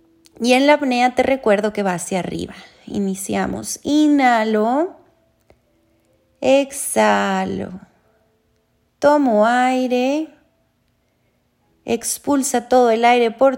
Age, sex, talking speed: 30-49, female, 90 wpm